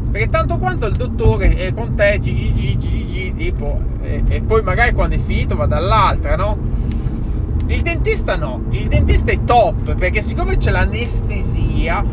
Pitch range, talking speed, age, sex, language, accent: 95-115 Hz, 155 wpm, 20-39, male, Italian, native